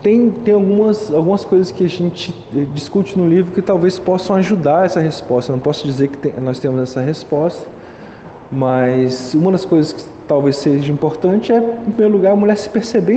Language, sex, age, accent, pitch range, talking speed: Portuguese, male, 20-39, Brazilian, 140-185 Hz, 195 wpm